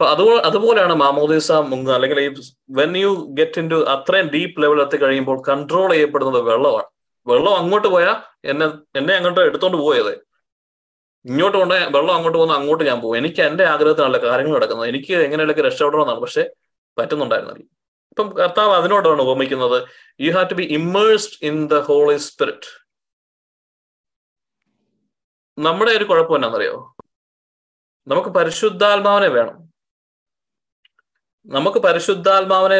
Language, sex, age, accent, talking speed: Malayalam, male, 20-39, native, 120 wpm